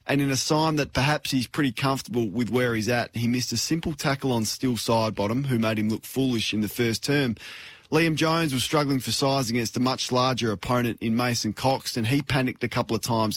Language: English